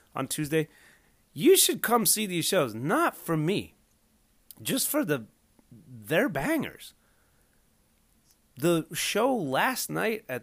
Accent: American